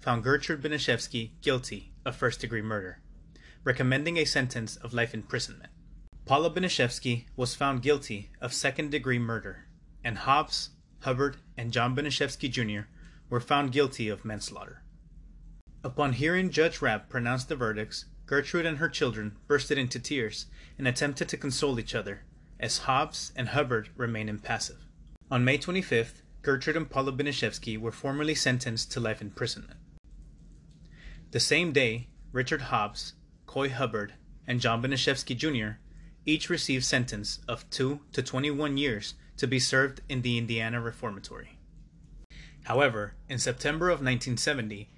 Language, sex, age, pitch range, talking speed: English, male, 30-49, 115-145 Hz, 135 wpm